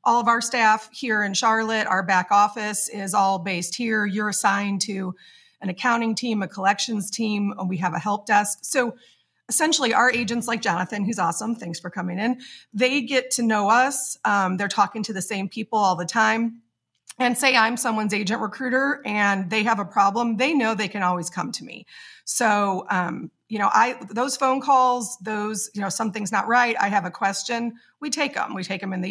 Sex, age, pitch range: female, 30-49, 195-235 Hz